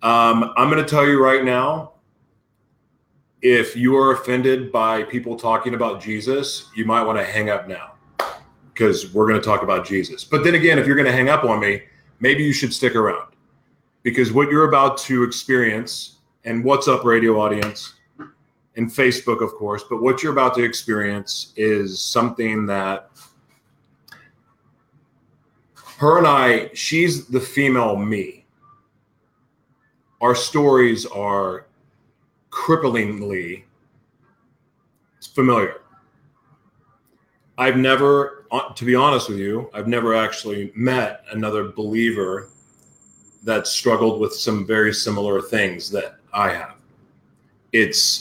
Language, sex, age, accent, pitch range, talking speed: English, male, 30-49, American, 110-135 Hz, 135 wpm